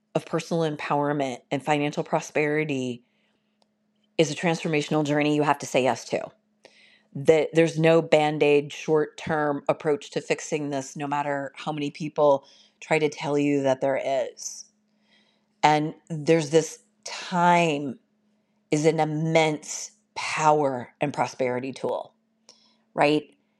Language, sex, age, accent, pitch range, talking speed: English, female, 40-59, American, 150-195 Hz, 125 wpm